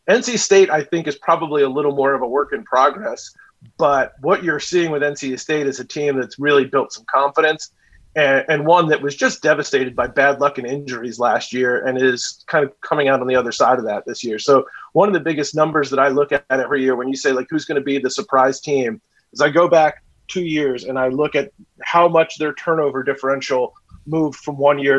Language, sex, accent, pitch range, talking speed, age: English, male, American, 135-160 Hz, 240 wpm, 30-49